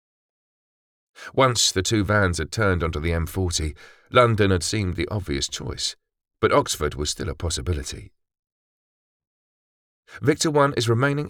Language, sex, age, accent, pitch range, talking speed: English, male, 40-59, British, 80-105 Hz, 135 wpm